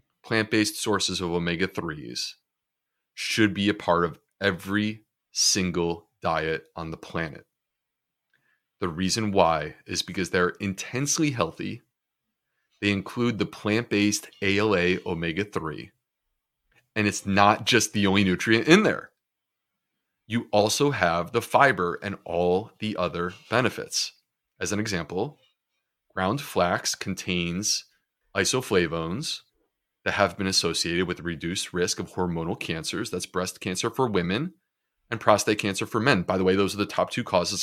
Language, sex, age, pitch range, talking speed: English, male, 30-49, 95-115 Hz, 140 wpm